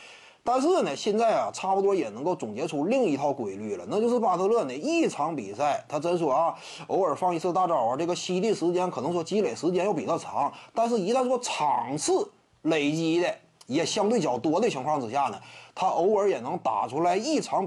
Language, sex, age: Chinese, male, 30-49